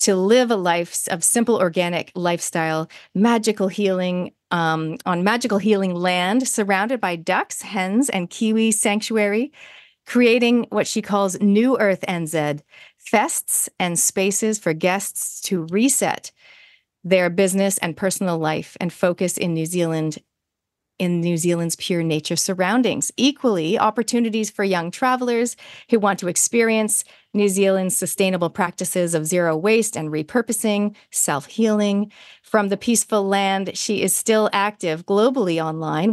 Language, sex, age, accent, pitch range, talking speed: English, female, 30-49, American, 175-215 Hz, 135 wpm